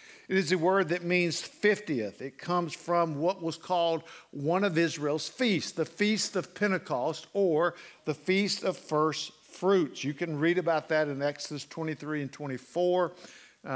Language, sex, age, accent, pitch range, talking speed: English, male, 60-79, American, 145-185 Hz, 160 wpm